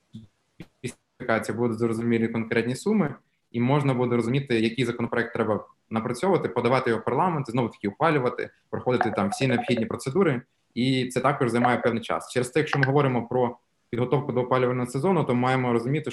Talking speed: 155 wpm